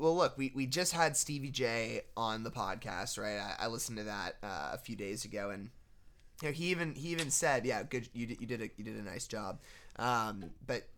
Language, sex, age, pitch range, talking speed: English, male, 20-39, 110-130 Hz, 240 wpm